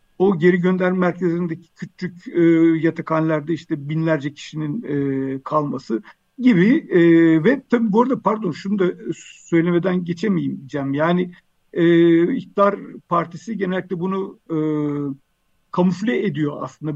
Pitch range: 155-195 Hz